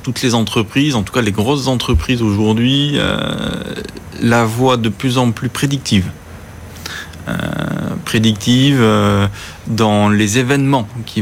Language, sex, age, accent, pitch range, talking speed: French, male, 30-49, French, 105-125 Hz, 135 wpm